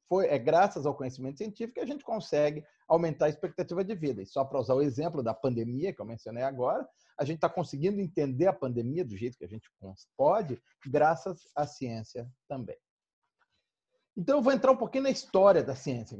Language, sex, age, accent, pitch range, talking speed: Portuguese, male, 40-59, Brazilian, 130-180 Hz, 195 wpm